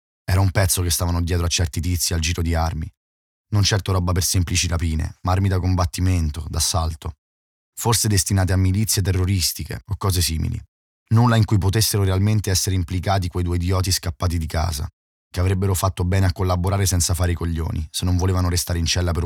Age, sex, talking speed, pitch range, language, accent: 20-39, male, 195 wpm, 85-100 Hz, Italian, native